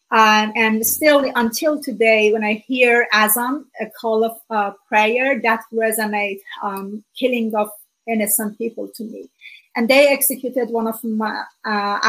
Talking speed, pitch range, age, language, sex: 140 wpm, 215-245 Hz, 30-49, English, female